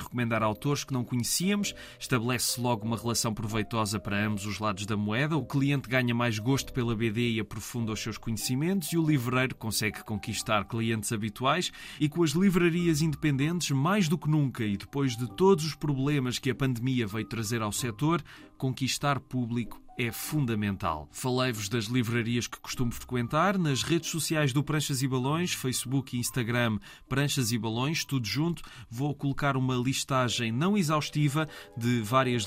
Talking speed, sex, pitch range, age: 165 wpm, male, 110-140 Hz, 20-39